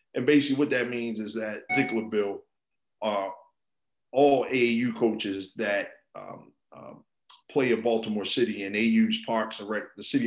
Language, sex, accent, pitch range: English, male, American, 100-120 Hz